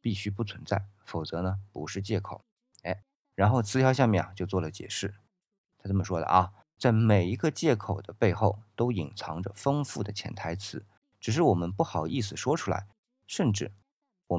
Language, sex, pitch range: Chinese, male, 95-115 Hz